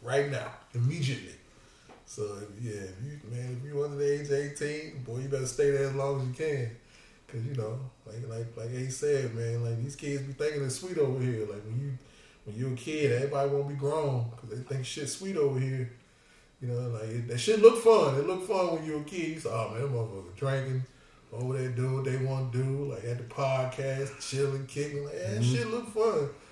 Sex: male